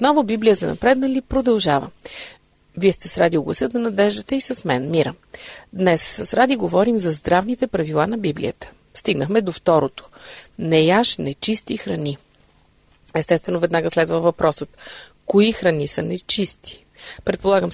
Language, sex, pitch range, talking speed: Bulgarian, female, 170-245 Hz, 135 wpm